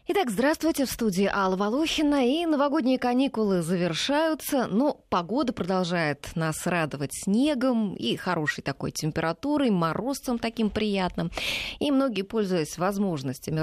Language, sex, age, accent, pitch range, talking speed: Russian, female, 20-39, native, 155-230 Hz, 120 wpm